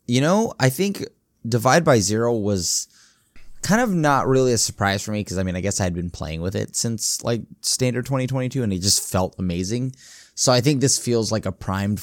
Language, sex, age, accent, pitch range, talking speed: English, male, 20-39, American, 100-130 Hz, 220 wpm